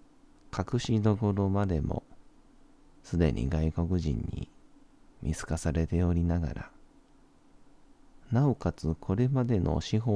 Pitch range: 80-100 Hz